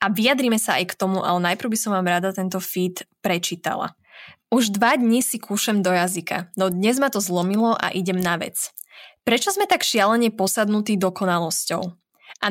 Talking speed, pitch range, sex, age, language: 180 wpm, 185-235 Hz, female, 20-39, Slovak